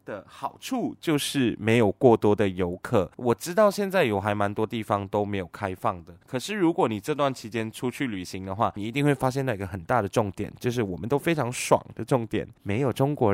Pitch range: 105-145 Hz